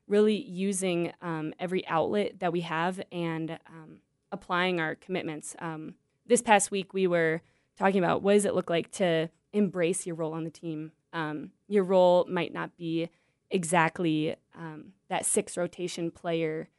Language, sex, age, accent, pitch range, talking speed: English, female, 20-39, American, 160-190 Hz, 160 wpm